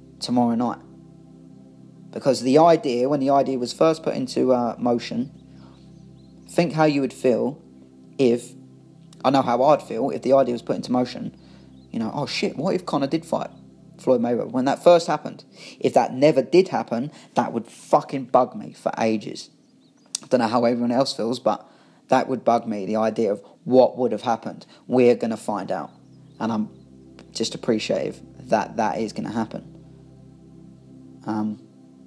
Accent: British